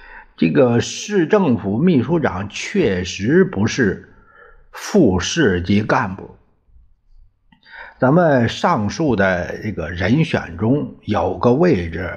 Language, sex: Chinese, male